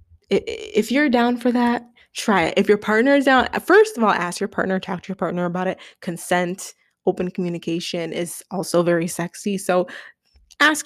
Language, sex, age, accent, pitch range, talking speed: English, female, 20-39, American, 190-255 Hz, 180 wpm